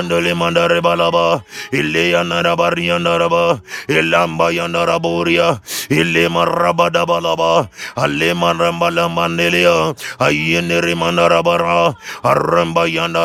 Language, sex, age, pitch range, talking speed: English, male, 30-49, 85-90 Hz, 105 wpm